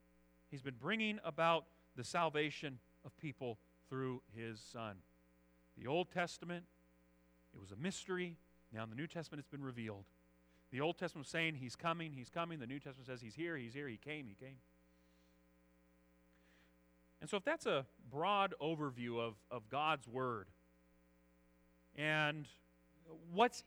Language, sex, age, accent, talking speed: English, male, 40-59, American, 150 wpm